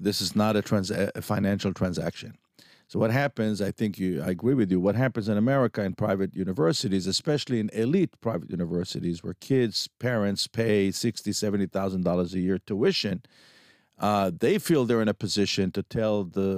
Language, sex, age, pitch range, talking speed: Hebrew, male, 50-69, 95-130 Hz, 180 wpm